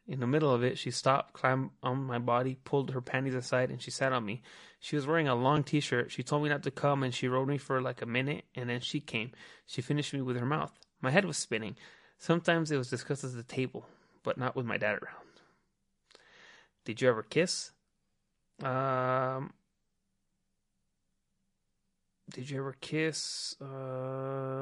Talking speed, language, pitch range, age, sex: 185 wpm, English, 130-165 Hz, 30-49, male